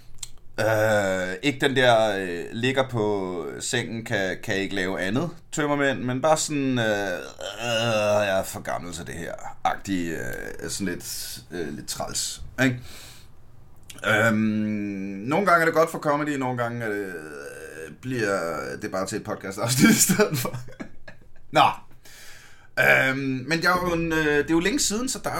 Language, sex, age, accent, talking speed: Danish, male, 30-49, native, 170 wpm